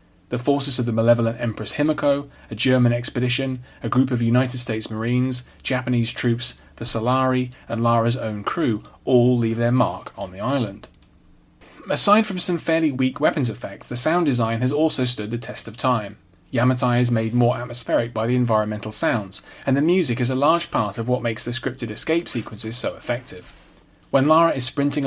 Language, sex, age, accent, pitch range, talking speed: English, male, 30-49, British, 115-140 Hz, 185 wpm